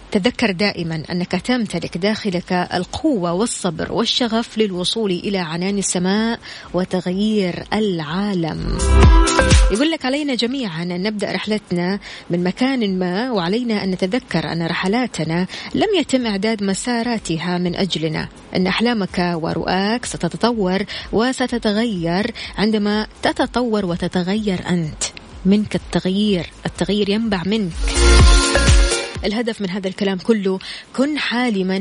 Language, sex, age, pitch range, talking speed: Arabic, female, 20-39, 185-235 Hz, 105 wpm